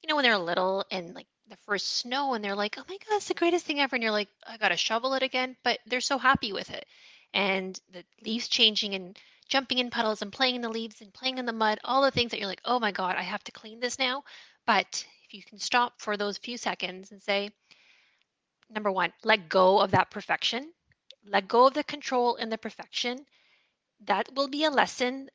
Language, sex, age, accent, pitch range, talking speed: English, female, 20-39, American, 200-265 Hz, 235 wpm